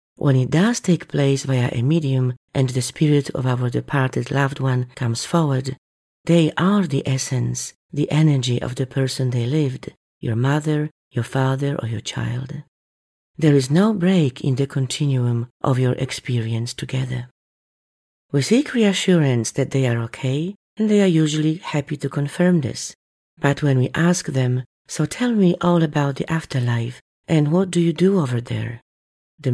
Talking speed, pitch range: 165 wpm, 125-160 Hz